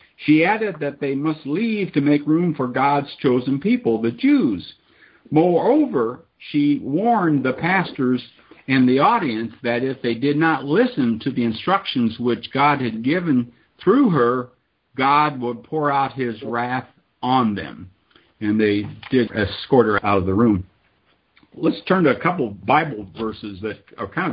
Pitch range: 105-135 Hz